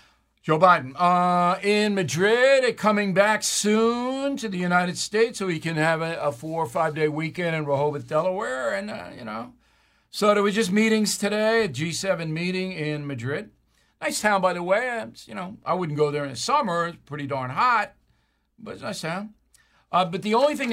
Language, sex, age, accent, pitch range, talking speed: English, male, 60-79, American, 145-195 Hz, 200 wpm